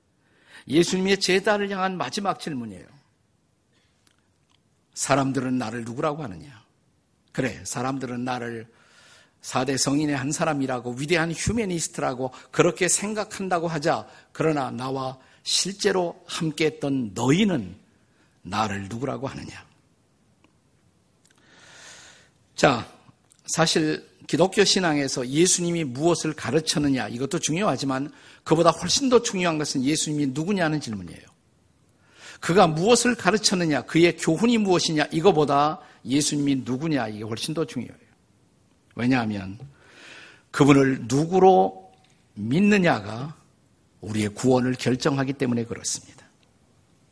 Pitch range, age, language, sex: 125-170 Hz, 50-69, Korean, male